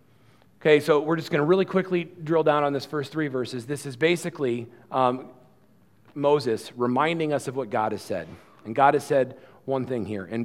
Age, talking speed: 40-59, 200 wpm